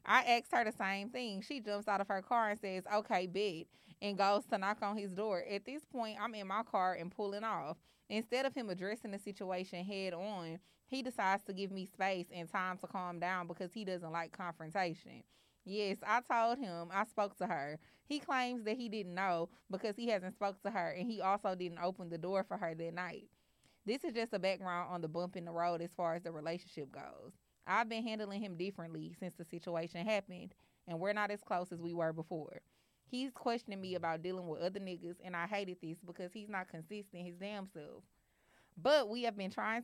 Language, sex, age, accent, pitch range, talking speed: English, female, 20-39, American, 175-210 Hz, 220 wpm